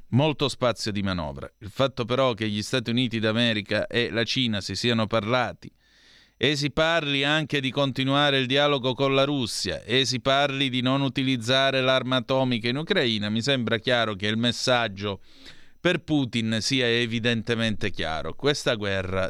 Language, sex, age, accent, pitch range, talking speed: Italian, male, 30-49, native, 105-135 Hz, 160 wpm